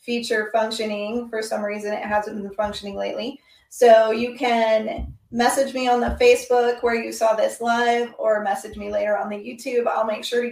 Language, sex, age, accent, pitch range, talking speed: English, female, 30-49, American, 210-235 Hz, 195 wpm